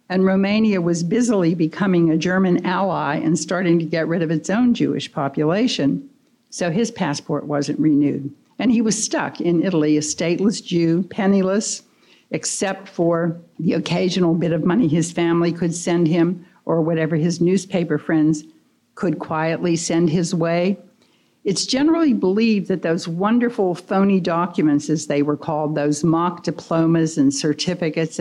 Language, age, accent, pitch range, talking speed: English, 60-79, American, 155-195 Hz, 155 wpm